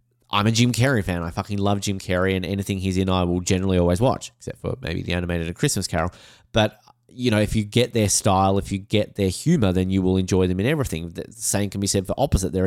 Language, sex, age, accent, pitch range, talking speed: English, male, 20-39, Australian, 95-120 Hz, 255 wpm